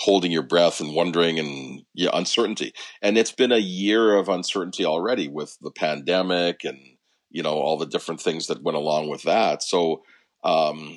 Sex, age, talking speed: male, 40-59, 180 wpm